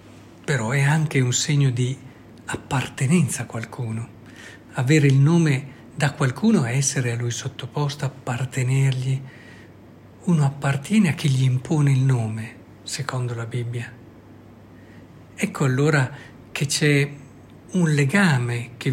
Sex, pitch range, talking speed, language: male, 120-165 Hz, 120 wpm, Italian